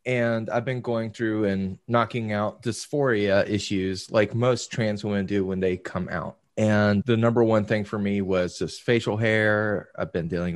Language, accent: English, American